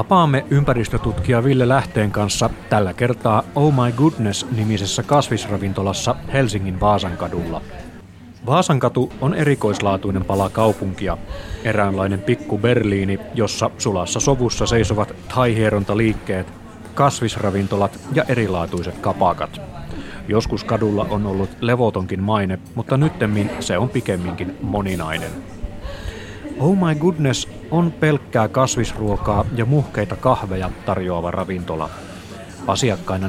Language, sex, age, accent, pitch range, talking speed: Finnish, male, 30-49, native, 95-120 Hz, 100 wpm